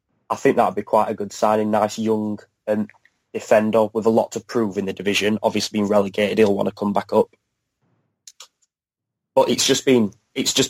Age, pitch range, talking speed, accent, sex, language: 20-39, 110-125 Hz, 195 wpm, British, male, English